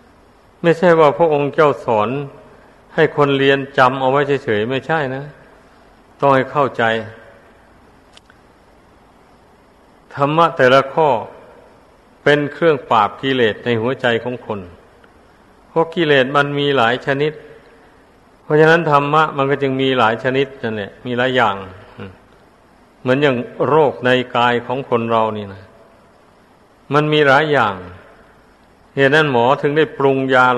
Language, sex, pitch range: Thai, male, 120-140 Hz